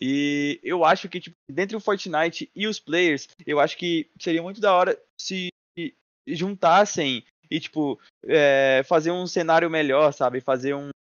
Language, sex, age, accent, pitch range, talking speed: Portuguese, male, 20-39, Brazilian, 140-170 Hz, 155 wpm